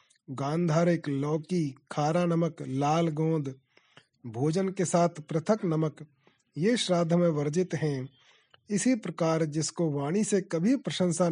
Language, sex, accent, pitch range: Hindi, male, native, 145-180 Hz